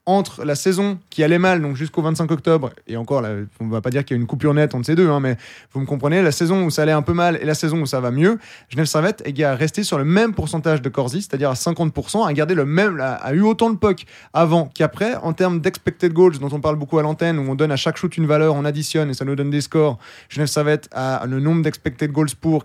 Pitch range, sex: 140-175 Hz, male